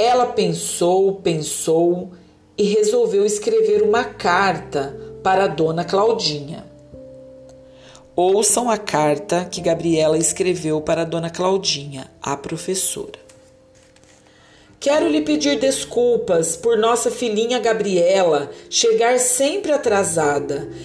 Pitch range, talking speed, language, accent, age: 165-245 Hz, 100 wpm, Portuguese, Brazilian, 40-59